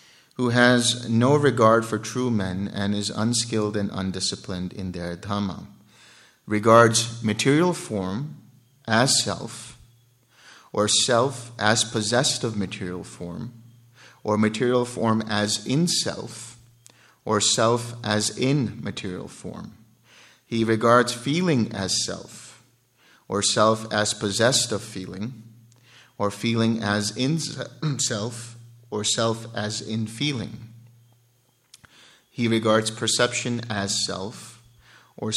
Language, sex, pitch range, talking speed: English, male, 105-120 Hz, 105 wpm